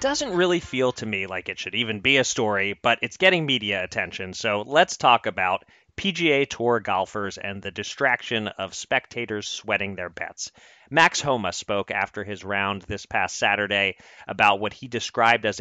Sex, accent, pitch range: male, American, 100-125 Hz